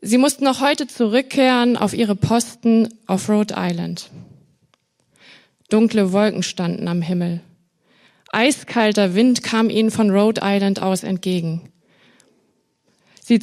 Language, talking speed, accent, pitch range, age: German, 115 wpm, German, 190-240 Hz, 20-39